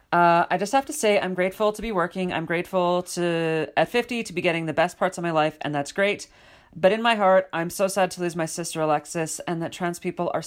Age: 40-59